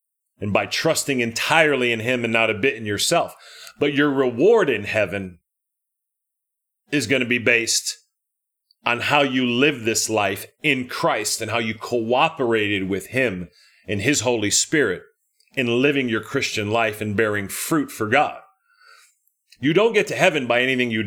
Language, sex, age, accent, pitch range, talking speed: English, male, 40-59, American, 110-145 Hz, 165 wpm